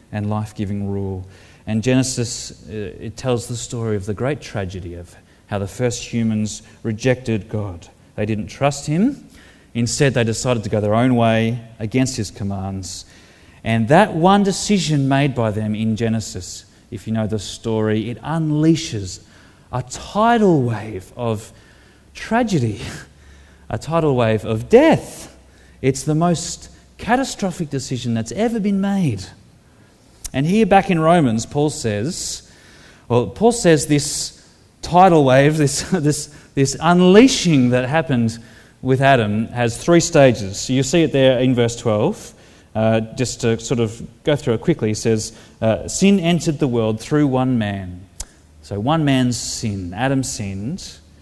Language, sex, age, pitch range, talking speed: English, male, 30-49, 105-145 Hz, 150 wpm